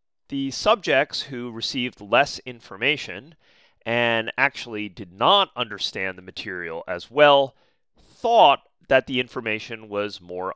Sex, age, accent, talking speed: male, 30-49, American, 120 wpm